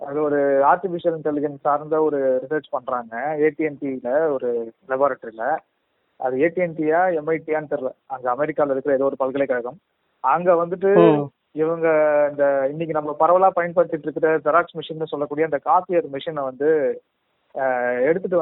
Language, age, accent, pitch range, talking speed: Tamil, 20-39, native, 145-180 Hz, 125 wpm